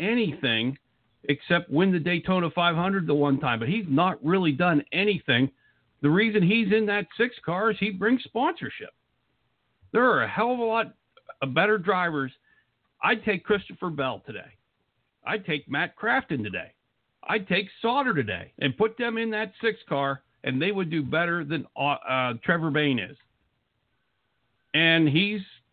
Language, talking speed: English, 165 wpm